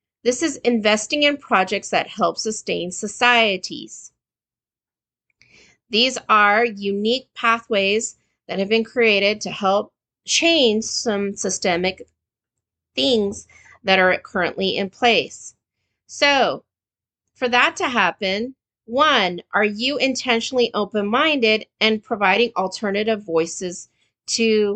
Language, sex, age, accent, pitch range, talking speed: English, female, 30-49, American, 185-245 Hz, 105 wpm